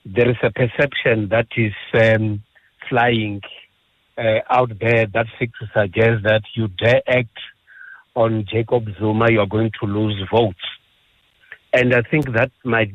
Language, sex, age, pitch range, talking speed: English, male, 60-79, 110-125 Hz, 140 wpm